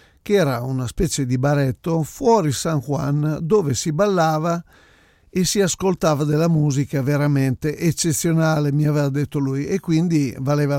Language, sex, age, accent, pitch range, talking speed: Italian, male, 50-69, native, 140-170 Hz, 145 wpm